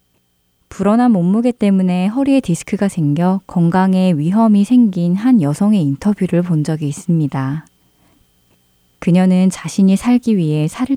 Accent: native